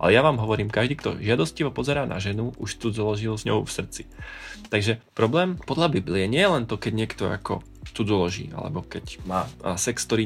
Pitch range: 100-125 Hz